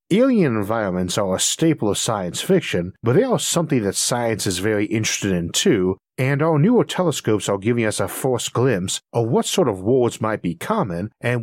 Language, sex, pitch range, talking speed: English, male, 100-140 Hz, 200 wpm